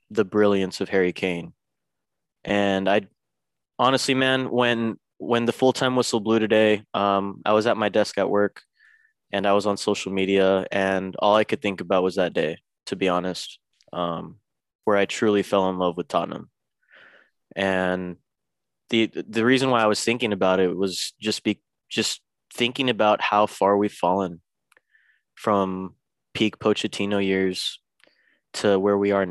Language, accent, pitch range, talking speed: English, American, 95-110 Hz, 160 wpm